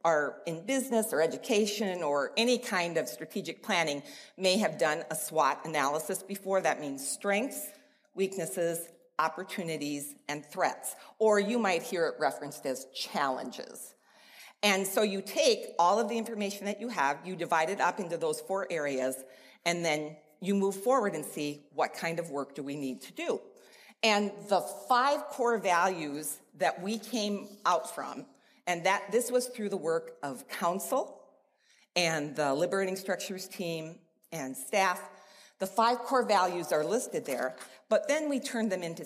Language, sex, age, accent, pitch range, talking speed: English, female, 40-59, American, 155-220 Hz, 165 wpm